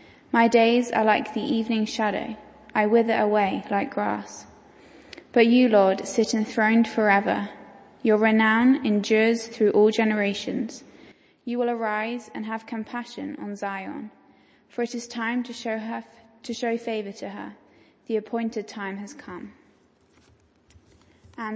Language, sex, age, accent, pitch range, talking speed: English, female, 10-29, British, 205-240 Hz, 140 wpm